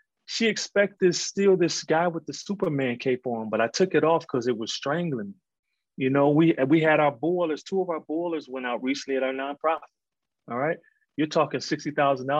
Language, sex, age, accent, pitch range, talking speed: English, male, 30-49, American, 135-230 Hz, 210 wpm